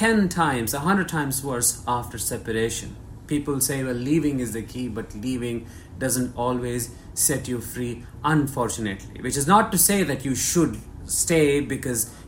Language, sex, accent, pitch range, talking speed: English, male, Indian, 115-150 Hz, 155 wpm